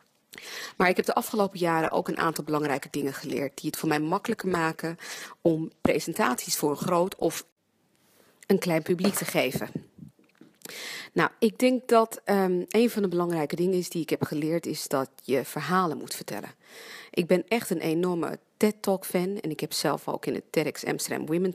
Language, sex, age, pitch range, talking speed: English, female, 40-59, 160-200 Hz, 185 wpm